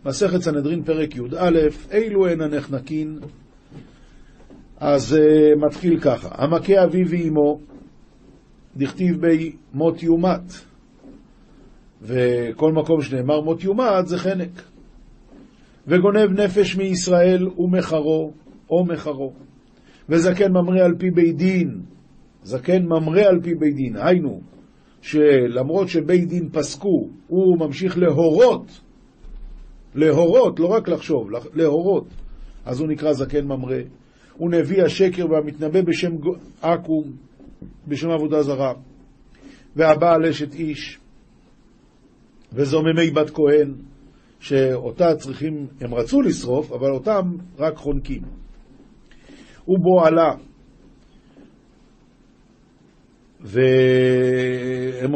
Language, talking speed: Hebrew, 95 wpm